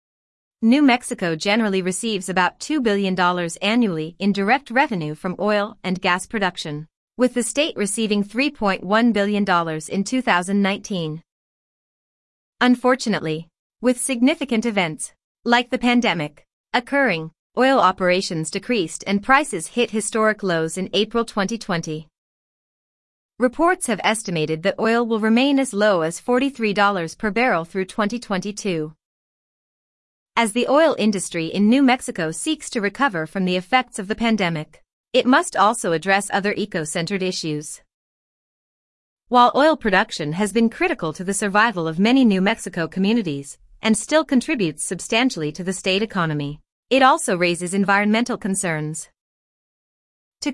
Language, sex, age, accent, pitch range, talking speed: English, female, 30-49, American, 180-240 Hz, 130 wpm